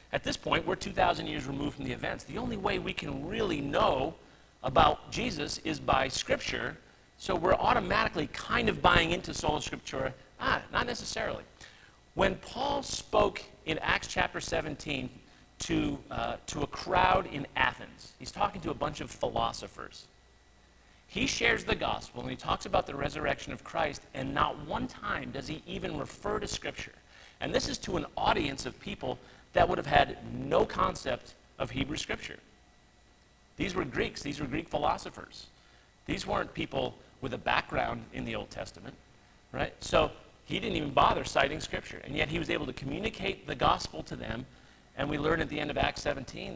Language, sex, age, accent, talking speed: English, male, 50-69, American, 180 wpm